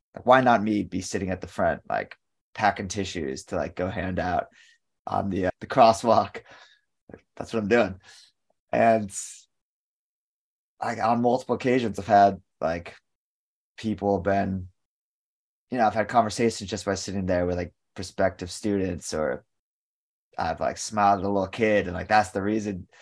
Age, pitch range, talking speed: 20-39, 95-110 Hz, 160 wpm